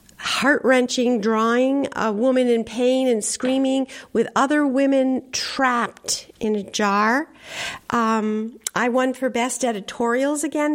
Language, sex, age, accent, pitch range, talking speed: English, female, 50-69, American, 220-270 Hz, 125 wpm